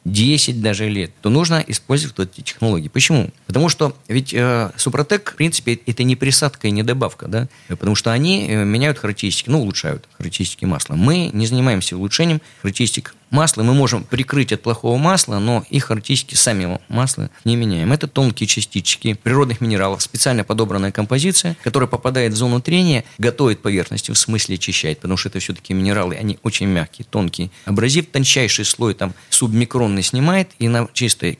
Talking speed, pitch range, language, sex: 170 wpm, 100-130 Hz, Russian, male